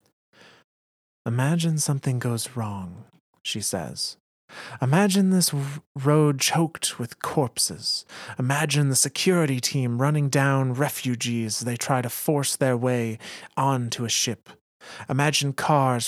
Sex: male